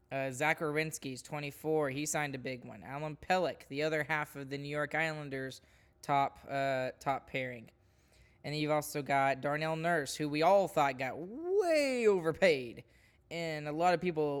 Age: 20-39